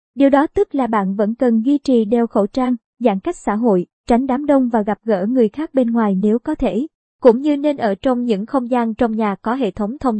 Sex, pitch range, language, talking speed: male, 220-270 Hz, Vietnamese, 255 wpm